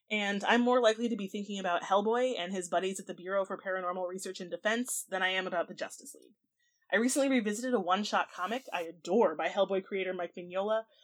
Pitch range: 180-255 Hz